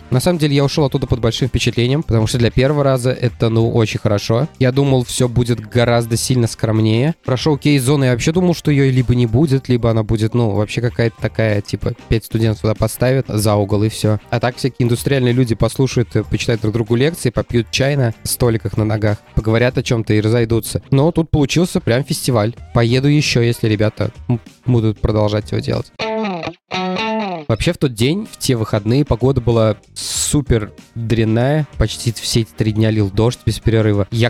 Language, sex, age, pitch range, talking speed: Russian, male, 20-39, 110-130 Hz, 185 wpm